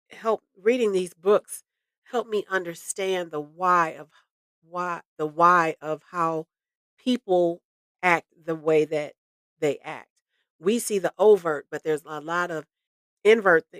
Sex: female